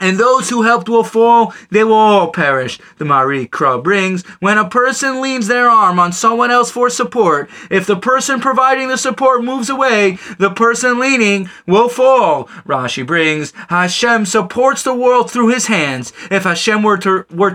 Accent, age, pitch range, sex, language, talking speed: American, 20-39, 190-245 Hz, male, English, 180 wpm